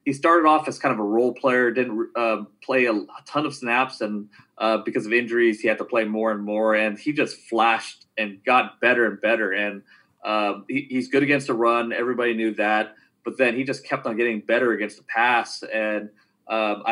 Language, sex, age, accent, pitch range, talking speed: English, male, 30-49, American, 105-125 Hz, 215 wpm